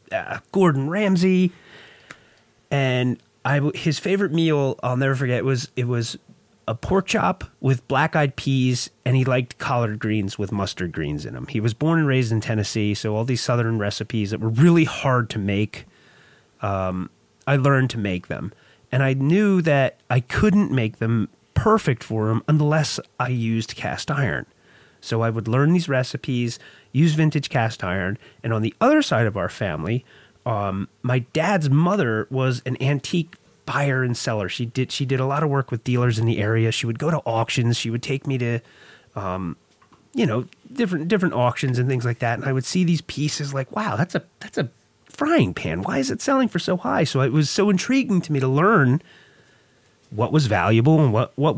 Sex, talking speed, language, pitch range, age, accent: male, 195 wpm, English, 115-155 Hz, 30-49, American